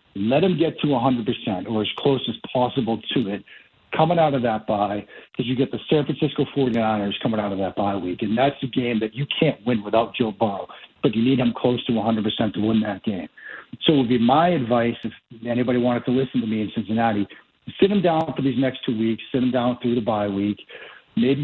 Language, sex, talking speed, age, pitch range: English, male, 230 wpm, 50-69, 120-145 Hz